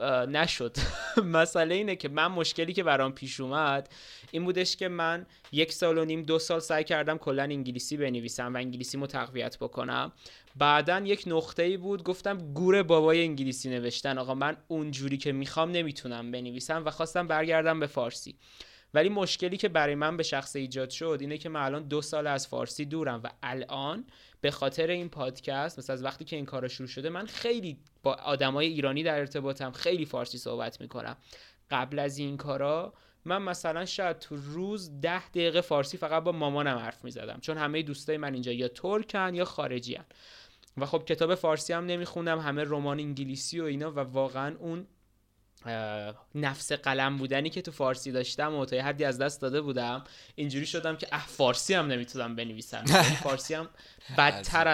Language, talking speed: Persian, 175 wpm